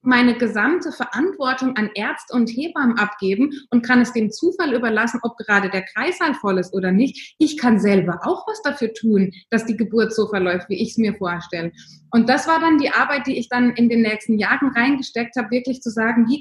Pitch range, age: 215-265 Hz, 30-49